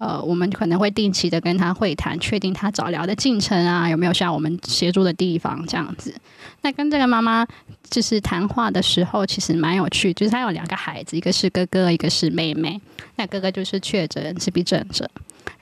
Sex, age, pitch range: female, 20-39, 170-220 Hz